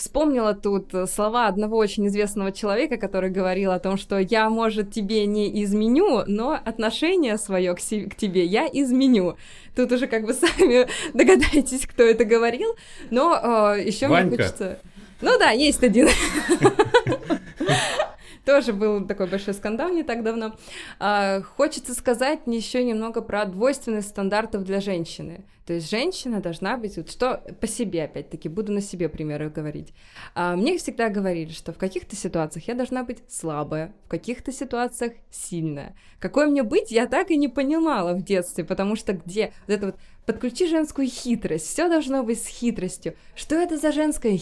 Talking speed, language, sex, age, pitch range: 160 wpm, Russian, female, 20-39, 190-265 Hz